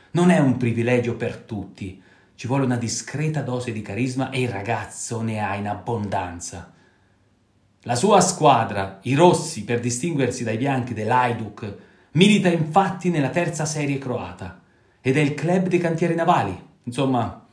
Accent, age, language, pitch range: native, 30-49, Italian, 105-145 Hz